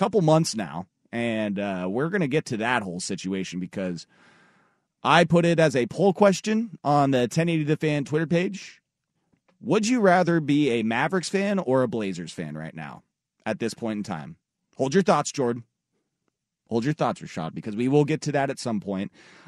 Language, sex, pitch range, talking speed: English, male, 115-160 Hz, 190 wpm